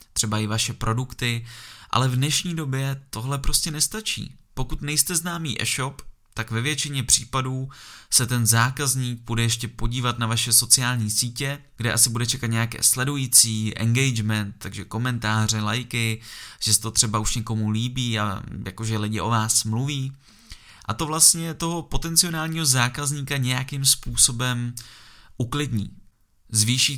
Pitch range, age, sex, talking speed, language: 115-140 Hz, 20-39, male, 140 wpm, Czech